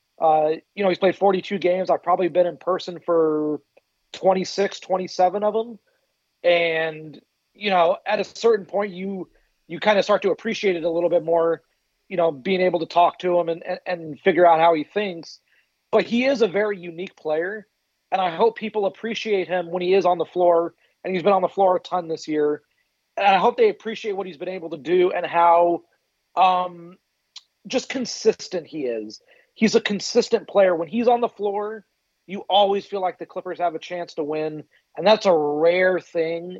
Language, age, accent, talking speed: English, 30-49, American, 205 wpm